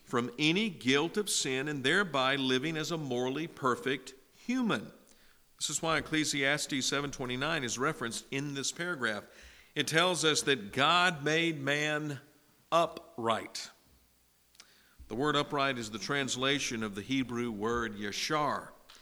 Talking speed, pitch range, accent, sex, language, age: 135 wpm, 125-155 Hz, American, male, English, 50-69